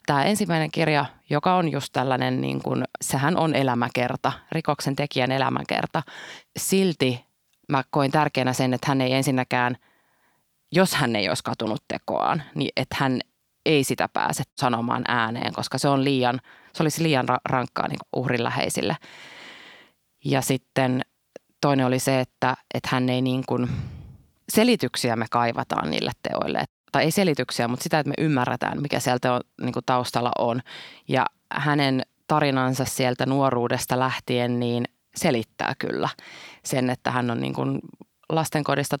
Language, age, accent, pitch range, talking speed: Finnish, 20-39, native, 125-145 Hz, 145 wpm